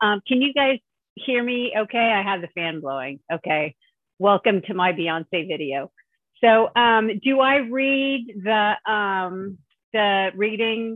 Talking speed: 150 wpm